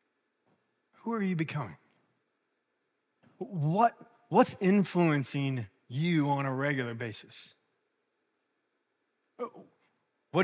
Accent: American